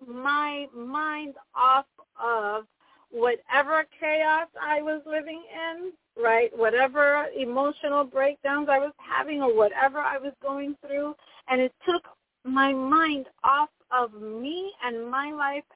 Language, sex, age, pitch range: English, female, 40-59, 240-300 Hz